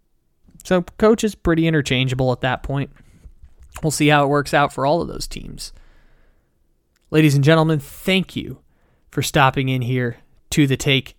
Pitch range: 115-150 Hz